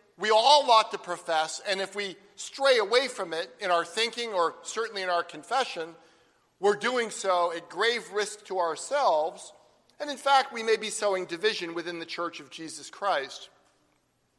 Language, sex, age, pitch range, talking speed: English, male, 50-69, 180-240 Hz, 175 wpm